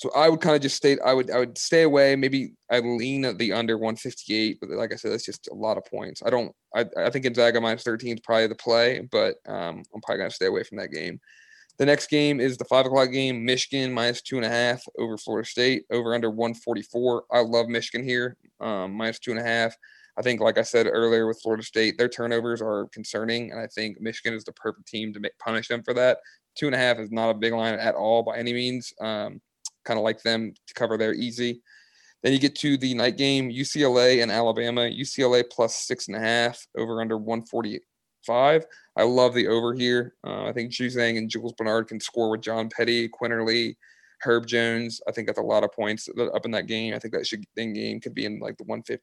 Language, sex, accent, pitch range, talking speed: English, male, American, 115-125 Hz, 235 wpm